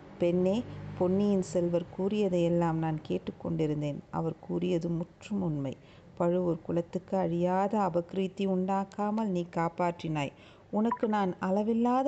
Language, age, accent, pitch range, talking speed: Tamil, 50-69, native, 175-210 Hz, 100 wpm